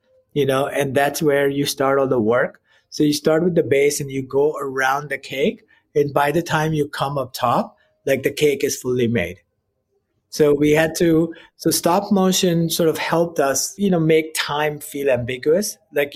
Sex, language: male, English